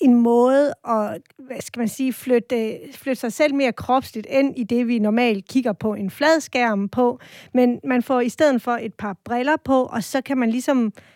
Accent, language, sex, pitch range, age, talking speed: native, Danish, female, 210-255 Hz, 30-49, 190 wpm